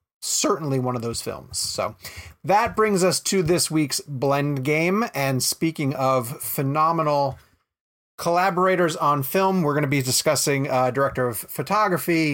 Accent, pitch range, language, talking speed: American, 130-170 Hz, English, 145 wpm